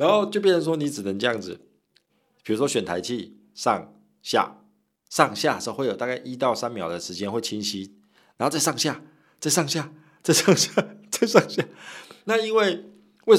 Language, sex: Chinese, male